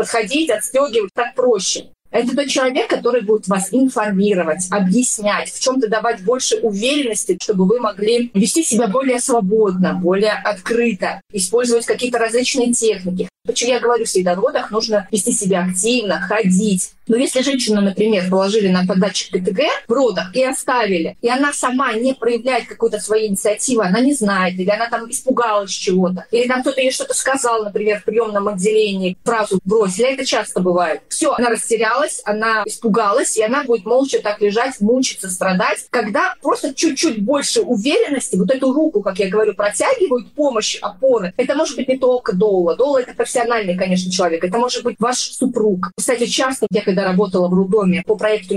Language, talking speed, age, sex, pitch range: Russian, 170 wpm, 30-49, female, 200-255 Hz